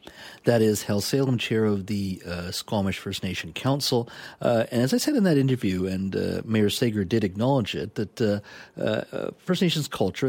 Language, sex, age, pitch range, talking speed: English, male, 40-59, 100-130 Hz, 190 wpm